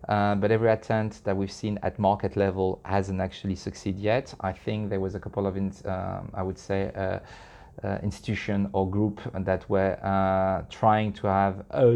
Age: 30-49